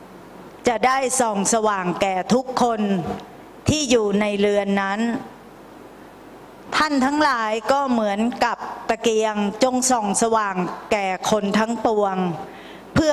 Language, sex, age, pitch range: Thai, female, 20-39, 200-245 Hz